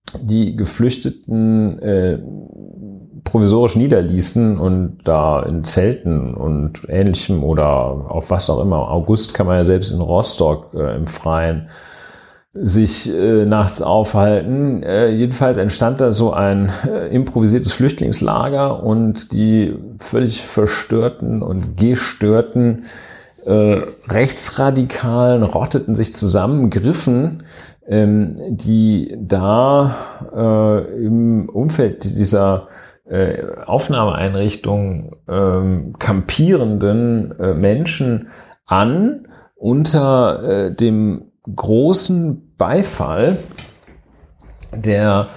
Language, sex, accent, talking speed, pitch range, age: German, male, German, 95 wpm, 95-125 Hz, 40-59